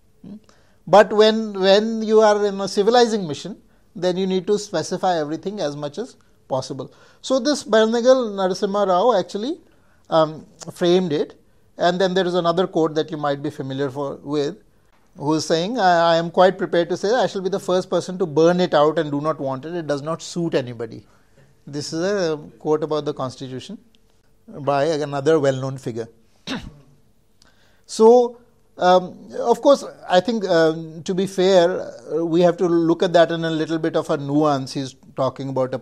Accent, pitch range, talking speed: Indian, 150-210 Hz, 185 wpm